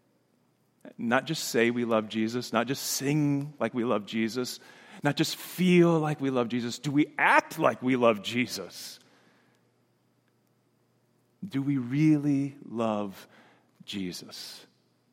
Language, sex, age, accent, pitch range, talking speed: English, male, 40-59, American, 115-145 Hz, 125 wpm